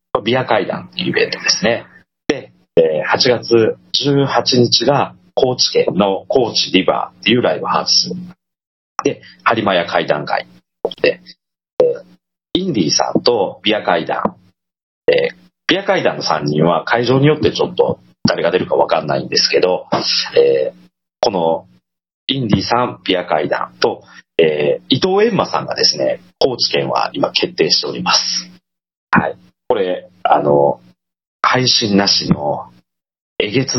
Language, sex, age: Japanese, male, 40-59